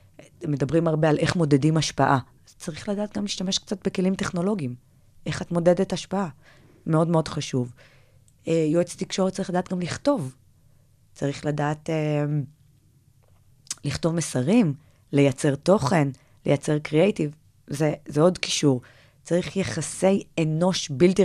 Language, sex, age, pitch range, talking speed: Hebrew, female, 20-39, 135-170 Hz, 125 wpm